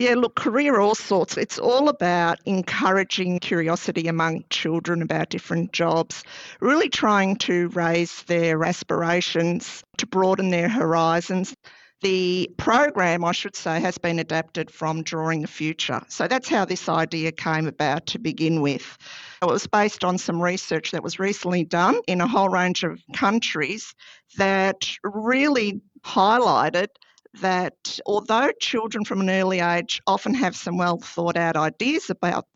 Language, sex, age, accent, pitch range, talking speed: English, female, 50-69, Australian, 170-205 Hz, 145 wpm